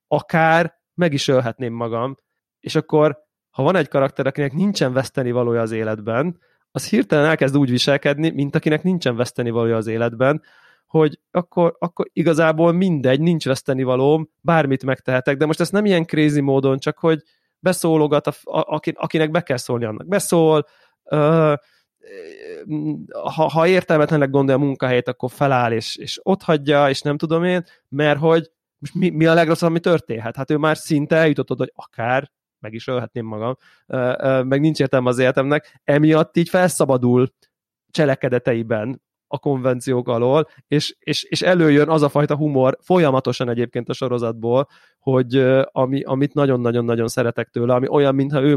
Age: 20-39